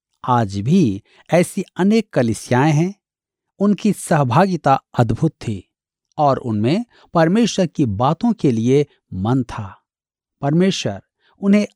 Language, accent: Hindi, native